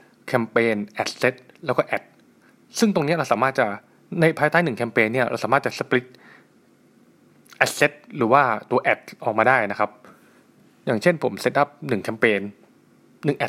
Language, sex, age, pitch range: Thai, male, 20-39, 115-155 Hz